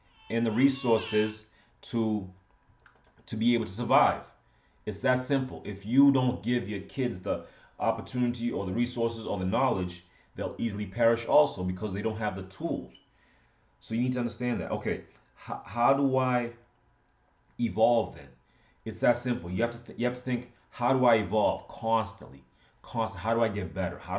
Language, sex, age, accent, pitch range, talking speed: English, male, 30-49, American, 95-115 Hz, 180 wpm